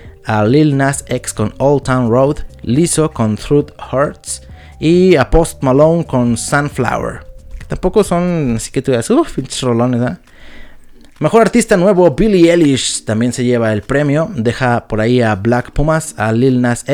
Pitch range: 110-145 Hz